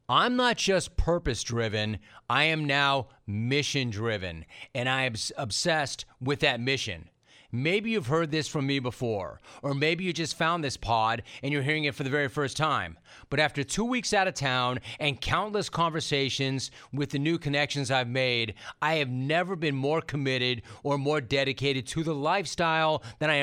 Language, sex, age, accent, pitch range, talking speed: English, male, 30-49, American, 130-160 Hz, 175 wpm